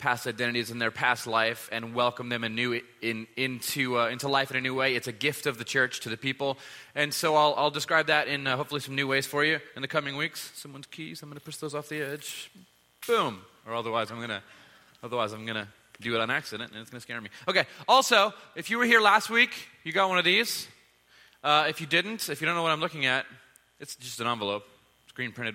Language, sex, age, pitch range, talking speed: English, male, 30-49, 125-155 Hz, 240 wpm